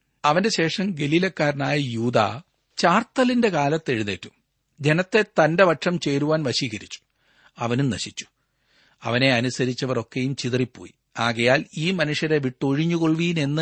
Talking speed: 90 wpm